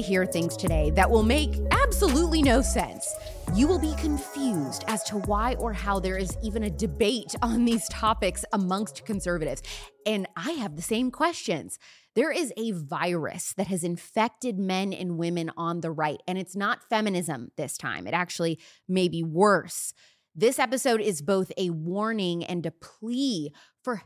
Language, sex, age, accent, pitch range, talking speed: English, female, 20-39, American, 170-220 Hz, 170 wpm